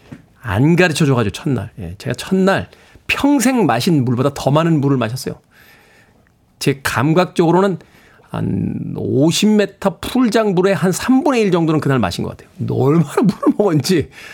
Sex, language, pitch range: male, Korean, 145-205 Hz